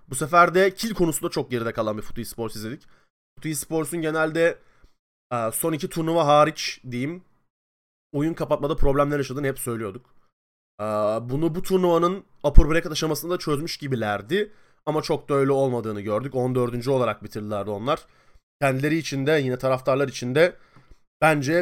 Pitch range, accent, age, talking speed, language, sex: 125-165 Hz, native, 30-49, 145 wpm, Turkish, male